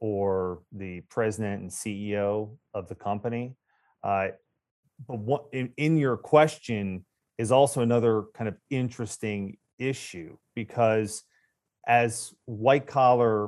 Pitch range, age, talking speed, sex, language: 115-145 Hz, 30-49, 115 wpm, male, English